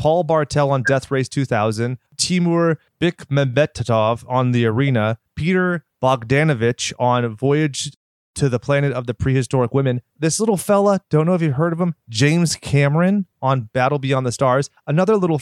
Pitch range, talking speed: 125-160 Hz, 160 wpm